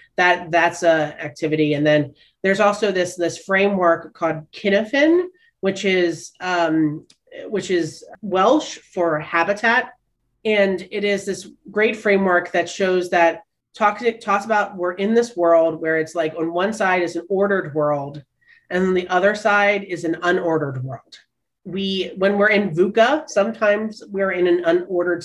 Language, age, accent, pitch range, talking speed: English, 30-49, American, 160-200 Hz, 155 wpm